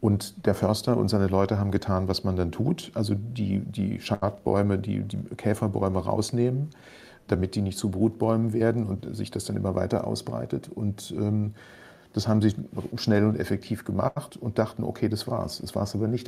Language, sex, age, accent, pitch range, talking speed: German, male, 40-59, German, 100-115 Hz, 190 wpm